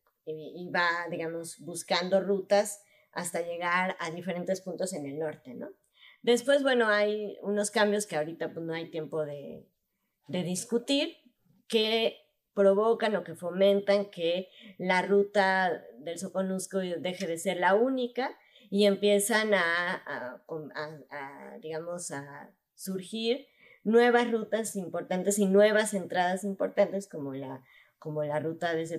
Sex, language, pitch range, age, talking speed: female, Spanish, 160-210 Hz, 20-39, 135 wpm